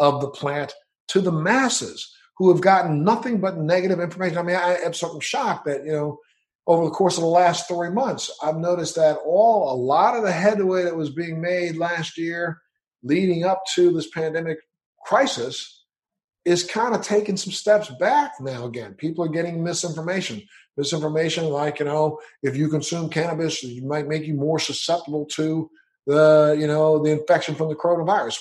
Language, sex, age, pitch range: English, male, 50-69, 150-180 Hz